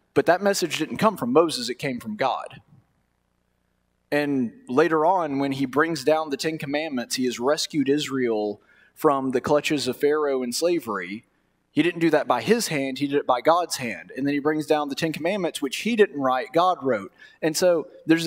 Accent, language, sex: American, English, male